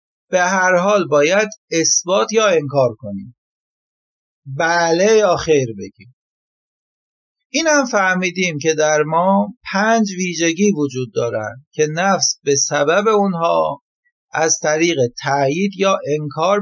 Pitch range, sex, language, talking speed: 150-210 Hz, male, Persian, 115 wpm